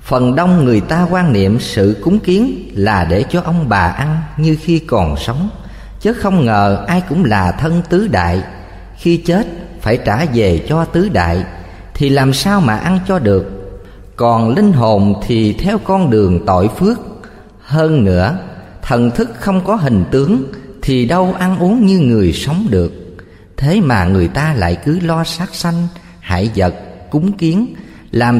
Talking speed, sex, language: 175 wpm, male, Vietnamese